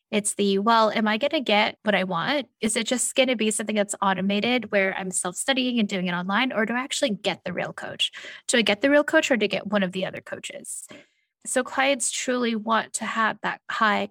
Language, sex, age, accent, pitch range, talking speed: English, female, 10-29, American, 190-240 Hz, 245 wpm